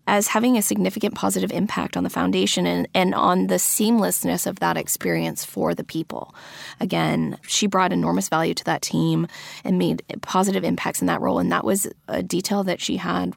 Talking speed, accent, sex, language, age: 195 wpm, American, female, English, 20-39